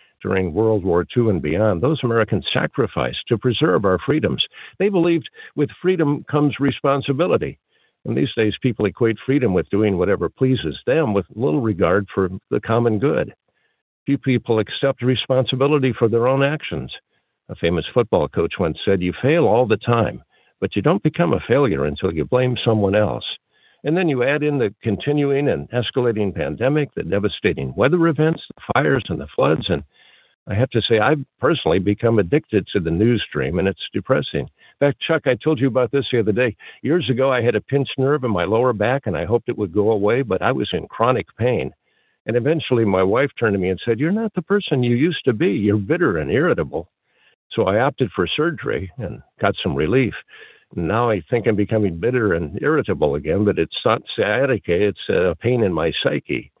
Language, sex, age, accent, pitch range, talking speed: English, male, 60-79, American, 105-140 Hz, 195 wpm